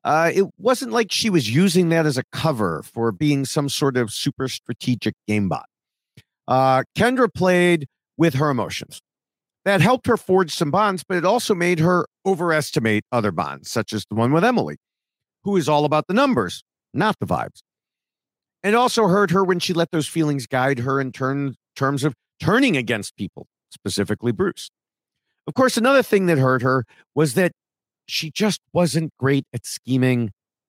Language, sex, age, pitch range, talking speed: English, male, 50-69, 125-185 Hz, 175 wpm